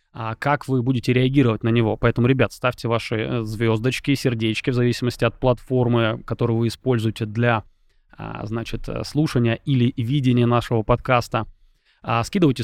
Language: Russian